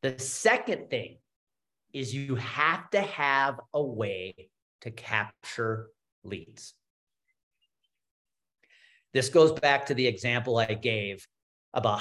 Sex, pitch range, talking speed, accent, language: male, 115-155 Hz, 110 wpm, American, English